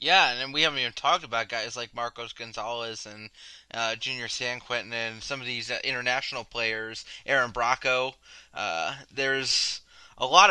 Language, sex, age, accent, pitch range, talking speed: English, male, 20-39, American, 115-145 Hz, 160 wpm